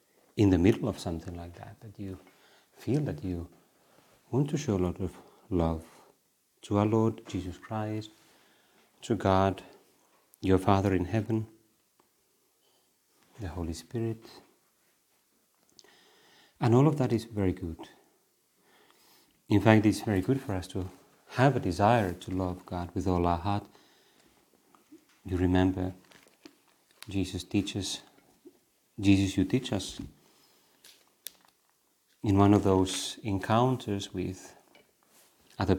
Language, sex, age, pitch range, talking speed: Finnish, male, 40-59, 95-115 Hz, 120 wpm